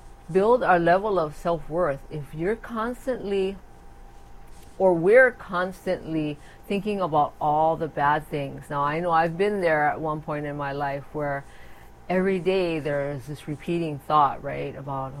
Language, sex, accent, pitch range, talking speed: English, female, American, 150-195 Hz, 155 wpm